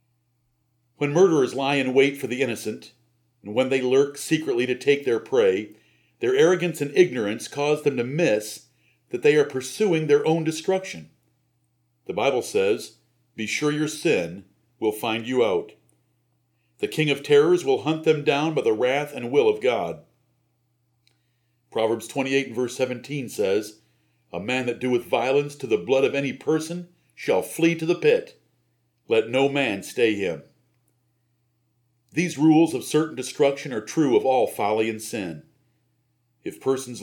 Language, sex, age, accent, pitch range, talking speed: English, male, 50-69, American, 120-155 Hz, 160 wpm